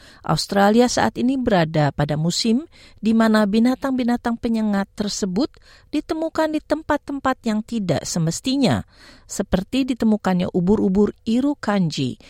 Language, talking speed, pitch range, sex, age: Indonesian, 105 wpm, 180-250 Hz, female, 50-69